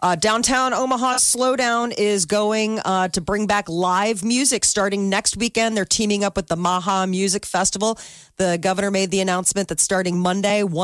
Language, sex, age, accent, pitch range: Japanese, female, 30-49, American, 155-195 Hz